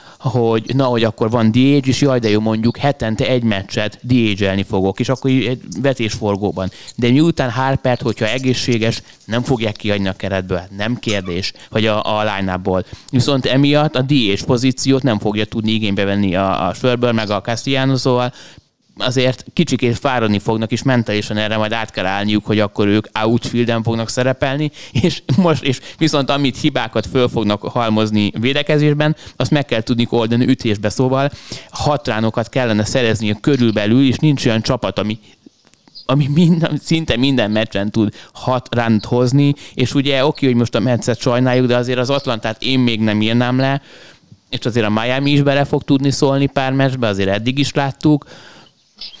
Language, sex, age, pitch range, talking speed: Hungarian, male, 20-39, 110-135 Hz, 165 wpm